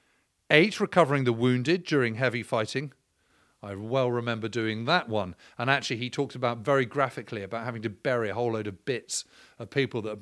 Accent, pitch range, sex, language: British, 115-150 Hz, male, English